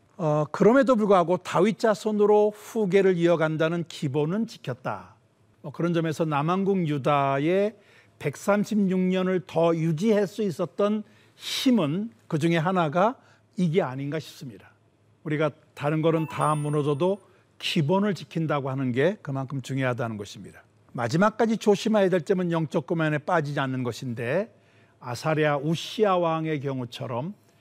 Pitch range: 125-185 Hz